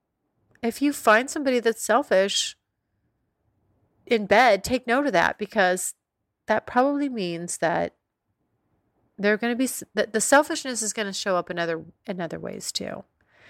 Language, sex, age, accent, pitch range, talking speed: English, female, 30-49, American, 185-235 Hz, 155 wpm